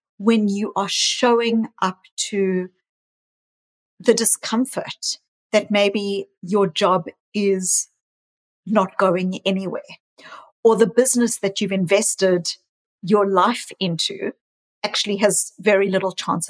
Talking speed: 110 wpm